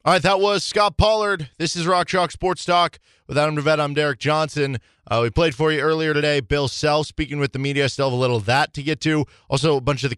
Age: 20-39